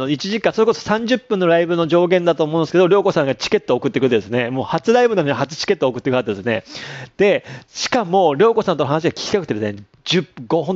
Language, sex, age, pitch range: Japanese, male, 30-49, 130-195 Hz